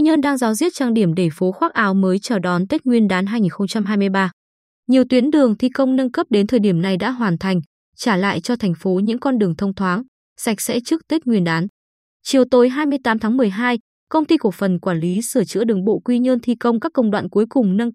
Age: 20-39